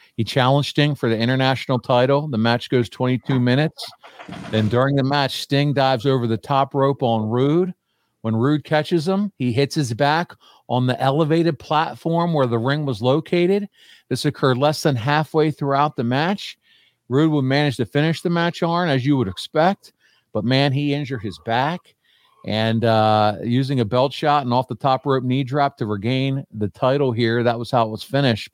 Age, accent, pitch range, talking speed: 50-69, American, 115-145 Hz, 185 wpm